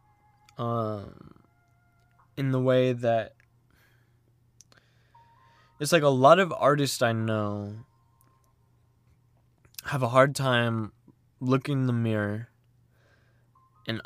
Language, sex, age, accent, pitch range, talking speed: English, male, 20-39, American, 115-130 Hz, 95 wpm